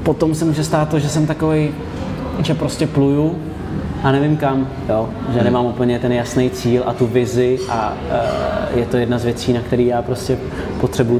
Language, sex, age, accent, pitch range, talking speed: Czech, male, 20-39, native, 125-145 Hz, 195 wpm